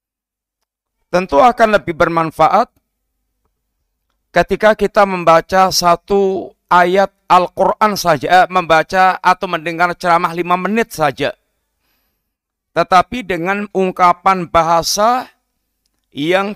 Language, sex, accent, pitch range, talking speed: Indonesian, male, native, 155-190 Hz, 85 wpm